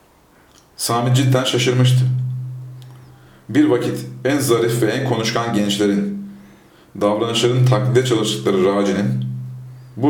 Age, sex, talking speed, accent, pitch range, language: 40-59, male, 95 wpm, native, 100-130 Hz, Turkish